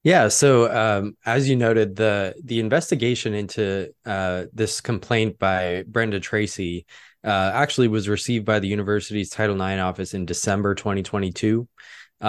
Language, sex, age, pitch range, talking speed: English, male, 20-39, 95-110 Hz, 140 wpm